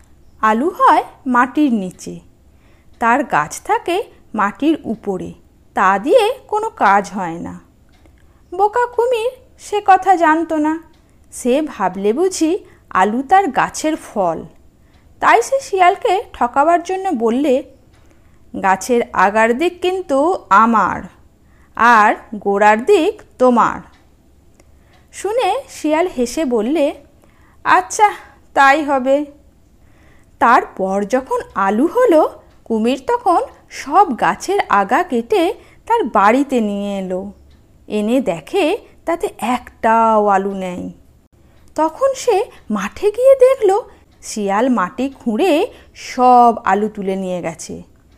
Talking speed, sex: 105 wpm, female